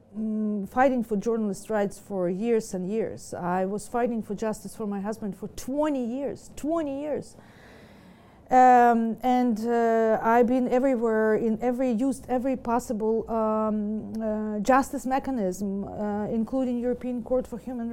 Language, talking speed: English, 140 wpm